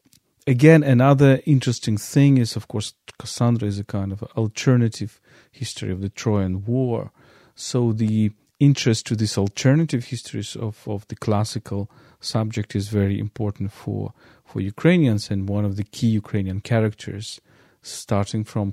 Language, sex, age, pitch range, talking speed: English, male, 40-59, 105-125 Hz, 145 wpm